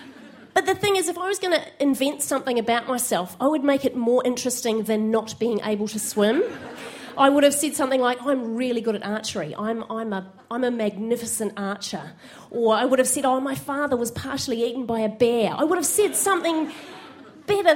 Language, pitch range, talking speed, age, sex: English, 225-290 Hz, 205 wpm, 30-49, female